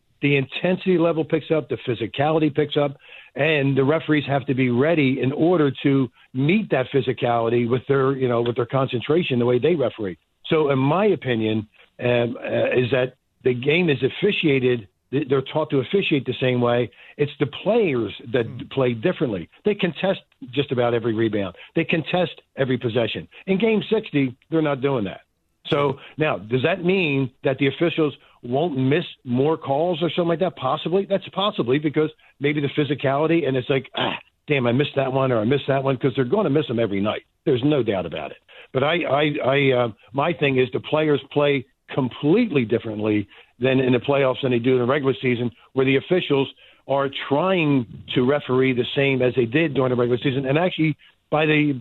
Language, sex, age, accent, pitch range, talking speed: English, male, 50-69, American, 125-155 Hz, 195 wpm